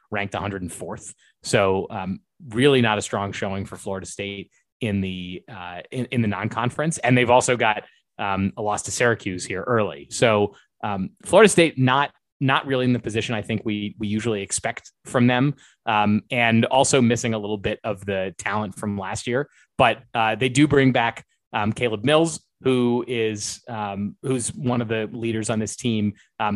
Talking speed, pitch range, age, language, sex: 185 wpm, 105-125 Hz, 20-39, English, male